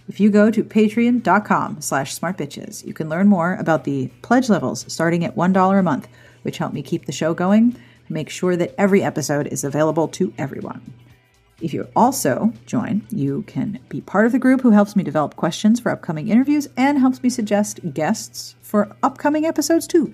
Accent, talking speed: American, 190 wpm